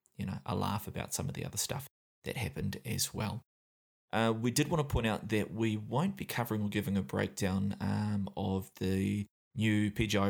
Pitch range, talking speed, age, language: 100-110 Hz, 205 wpm, 20-39, English